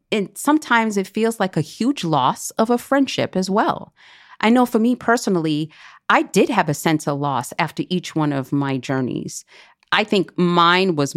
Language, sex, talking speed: English, female, 190 wpm